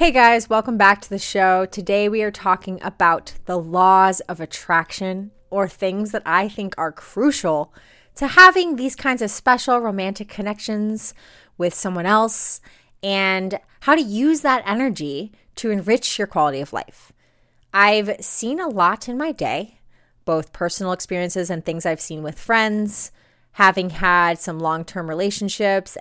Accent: American